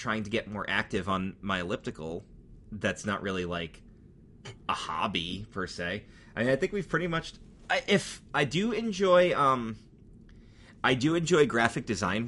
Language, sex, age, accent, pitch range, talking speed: English, male, 30-49, American, 100-140 Hz, 165 wpm